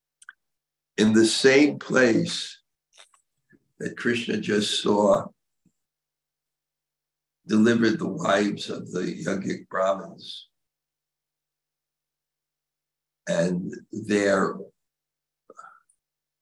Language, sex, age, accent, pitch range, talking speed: English, male, 60-79, American, 110-155 Hz, 60 wpm